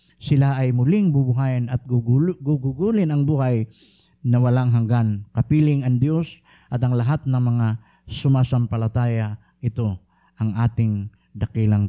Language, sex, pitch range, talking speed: Filipino, male, 110-145 Hz, 125 wpm